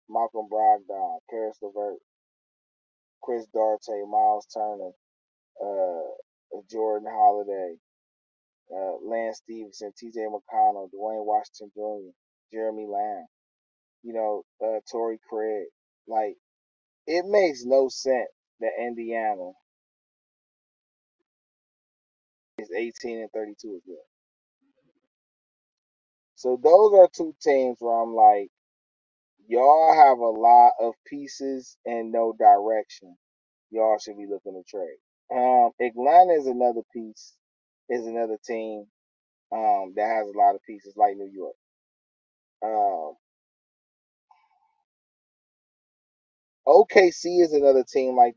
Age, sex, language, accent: 20-39, male, English, American